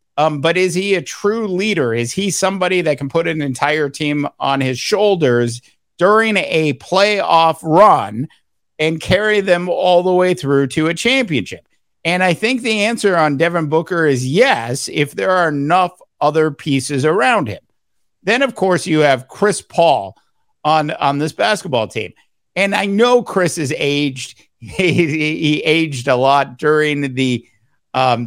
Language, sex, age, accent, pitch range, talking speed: English, male, 50-69, American, 135-175 Hz, 165 wpm